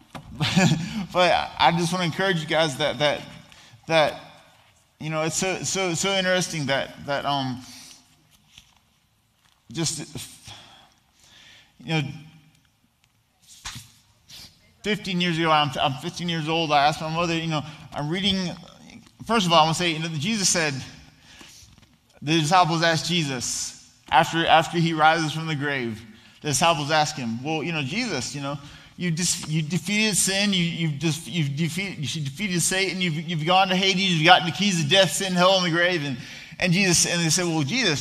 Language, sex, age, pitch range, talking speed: English, male, 20-39, 150-185 Hz, 170 wpm